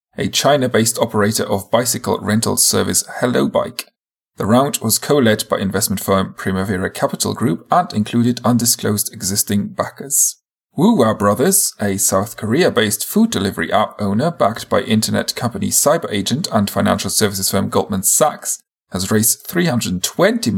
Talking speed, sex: 135 wpm, male